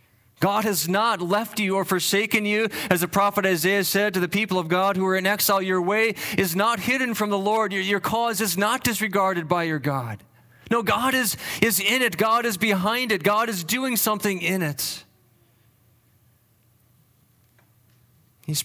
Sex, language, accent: male, English, American